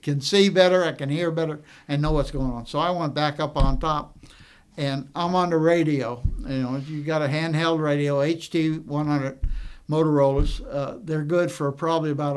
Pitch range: 135-160 Hz